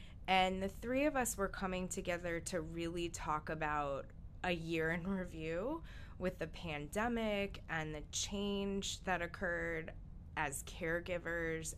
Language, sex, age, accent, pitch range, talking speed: English, female, 20-39, American, 155-195 Hz, 130 wpm